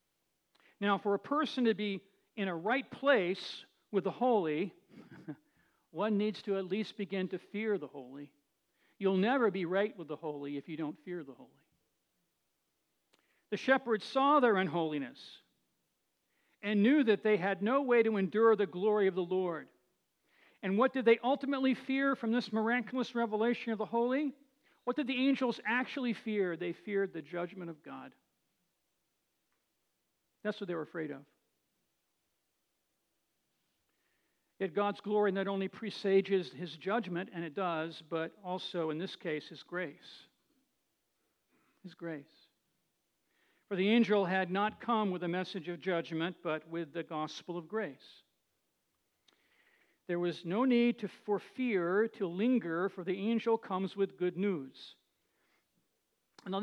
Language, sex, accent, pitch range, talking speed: English, male, American, 175-230 Hz, 145 wpm